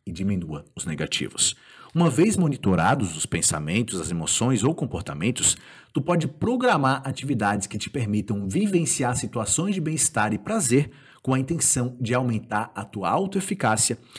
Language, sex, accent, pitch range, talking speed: Portuguese, male, Brazilian, 105-150 Hz, 145 wpm